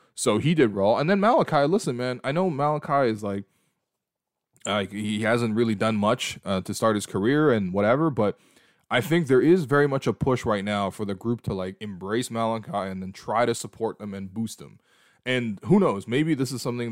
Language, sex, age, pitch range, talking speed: English, male, 20-39, 105-125 Hz, 220 wpm